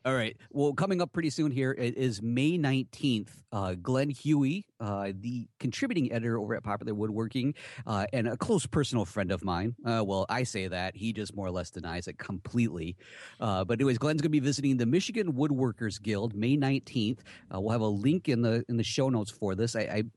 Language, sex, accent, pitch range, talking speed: English, male, American, 100-135 Hz, 215 wpm